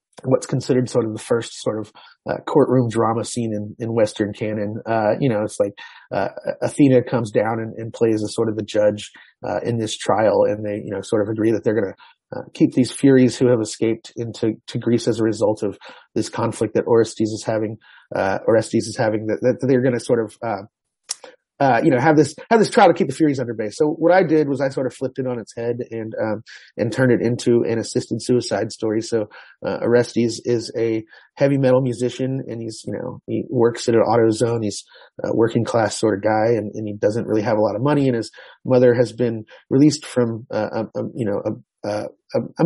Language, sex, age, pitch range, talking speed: English, male, 30-49, 110-130 Hz, 235 wpm